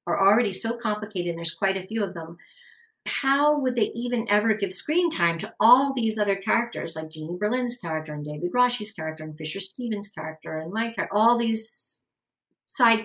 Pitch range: 175-230 Hz